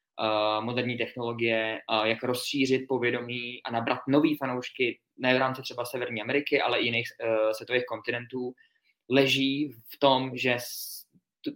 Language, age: Czech, 20-39